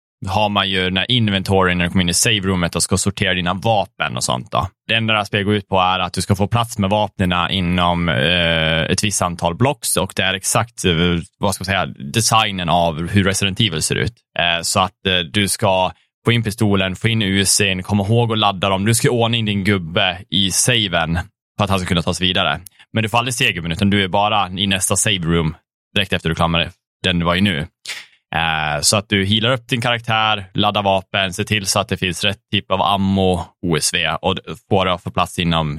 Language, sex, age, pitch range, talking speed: Swedish, male, 20-39, 90-110 Hz, 225 wpm